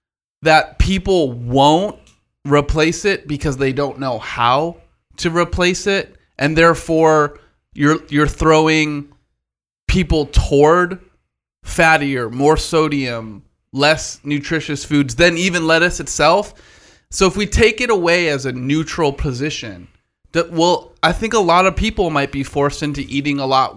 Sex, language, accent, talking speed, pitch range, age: male, English, American, 140 wpm, 130-165 Hz, 20-39